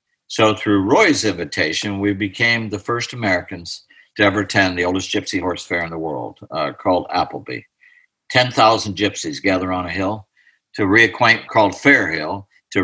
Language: English